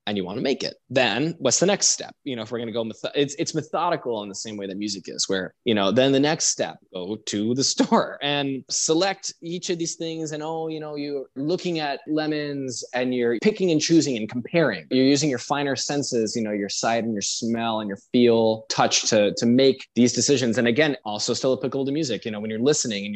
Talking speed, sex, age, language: 245 wpm, male, 20-39, English